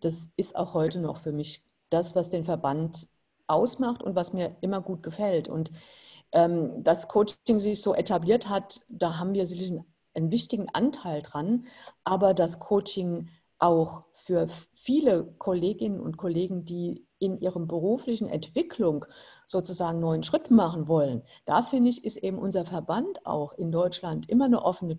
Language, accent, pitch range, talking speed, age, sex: German, German, 170-230 Hz, 160 wpm, 50-69, female